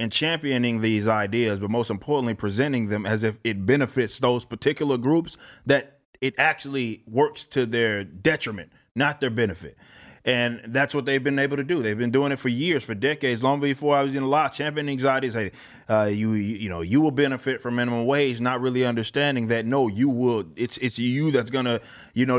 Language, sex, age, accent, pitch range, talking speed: English, male, 30-49, American, 110-140 Hz, 205 wpm